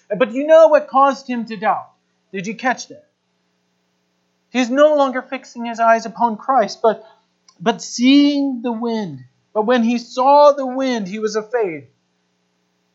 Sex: male